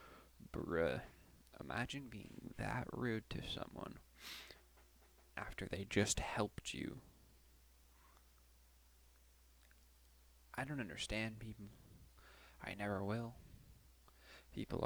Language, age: English, 20-39